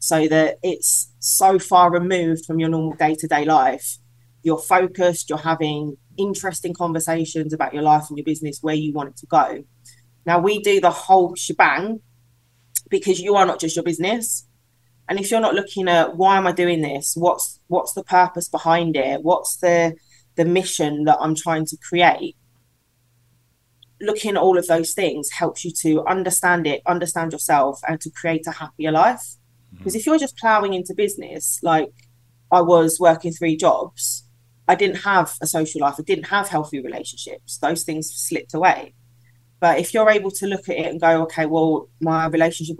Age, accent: 20-39, British